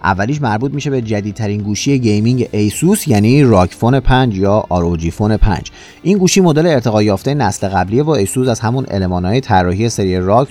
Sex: male